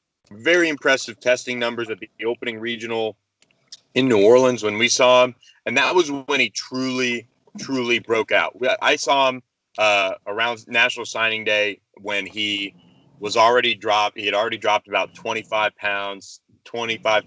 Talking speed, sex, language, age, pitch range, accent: 155 wpm, male, English, 30-49, 100-120 Hz, American